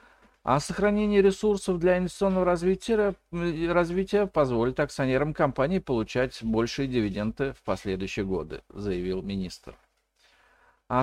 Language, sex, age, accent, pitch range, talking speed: Russian, male, 50-69, native, 110-180 Hz, 105 wpm